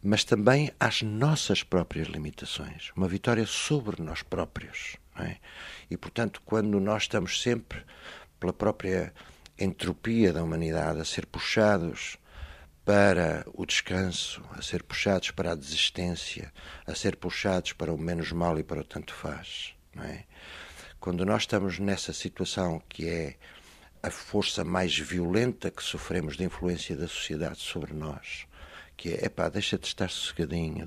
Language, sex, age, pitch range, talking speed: Portuguese, male, 60-79, 80-100 Hz, 150 wpm